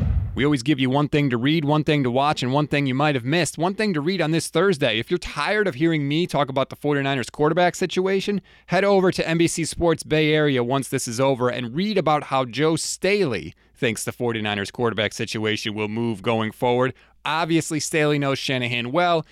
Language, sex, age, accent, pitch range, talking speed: English, male, 30-49, American, 120-160 Hz, 215 wpm